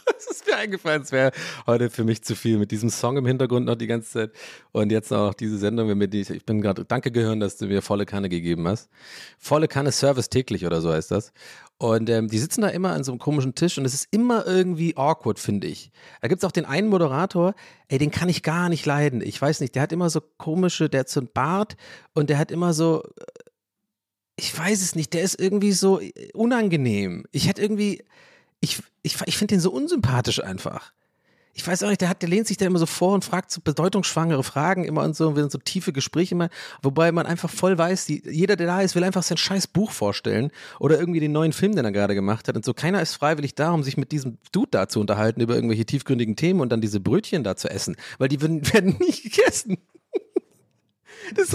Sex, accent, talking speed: male, German, 240 wpm